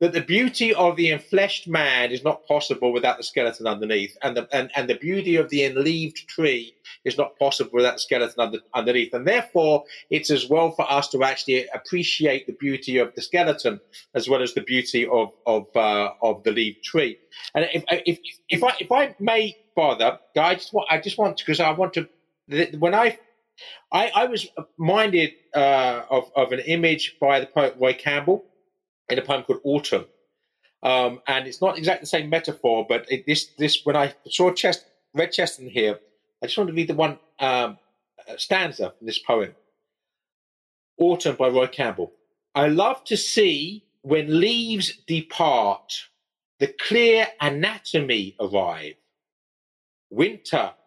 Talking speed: 165 wpm